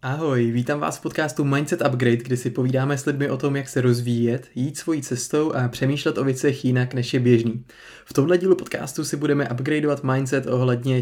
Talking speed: 200 wpm